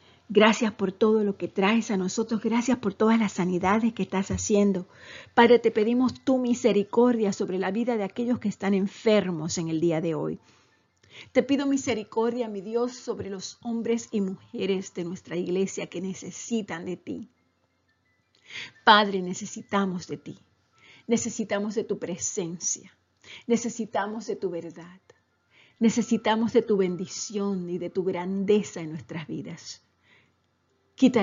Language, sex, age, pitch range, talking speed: Spanish, female, 50-69, 165-220 Hz, 145 wpm